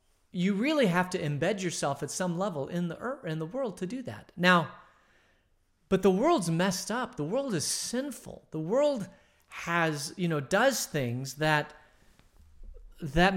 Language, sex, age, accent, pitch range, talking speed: English, male, 40-59, American, 145-195 Hz, 165 wpm